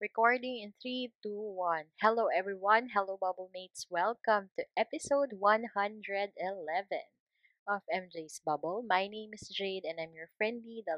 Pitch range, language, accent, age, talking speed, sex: 175-230 Hz, Filipino, native, 20-39, 140 wpm, female